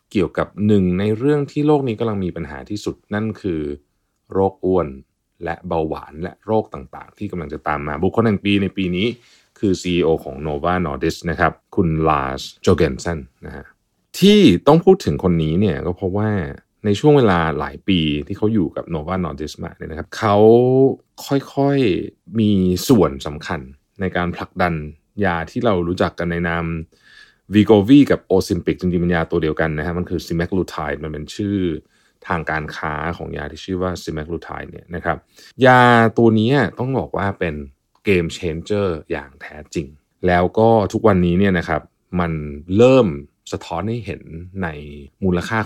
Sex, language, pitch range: male, Thai, 80-105 Hz